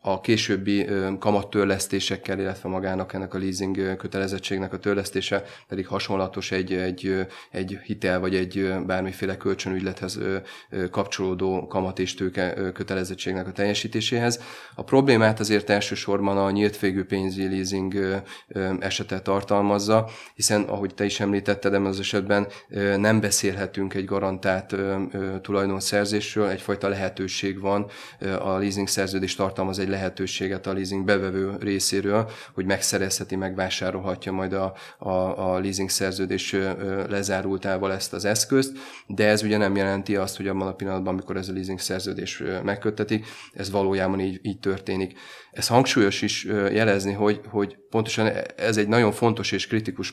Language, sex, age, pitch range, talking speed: Hungarian, male, 30-49, 95-100 Hz, 135 wpm